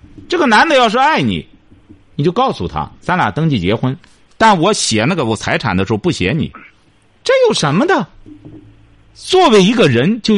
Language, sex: Chinese, male